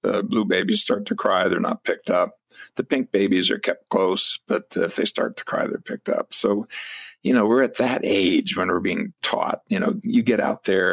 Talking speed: 235 wpm